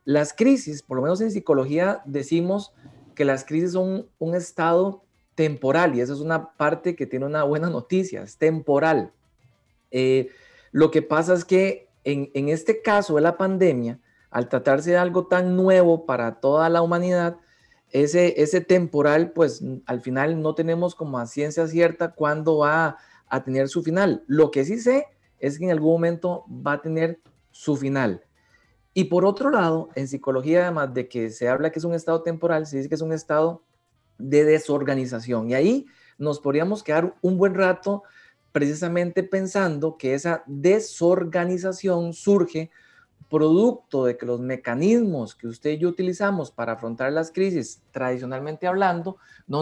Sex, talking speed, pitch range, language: male, 170 wpm, 140-180 Hz, Spanish